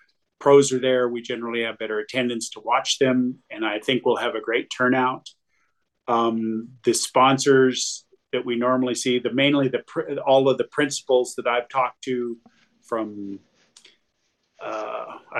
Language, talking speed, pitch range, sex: English, 150 wpm, 115-130 Hz, male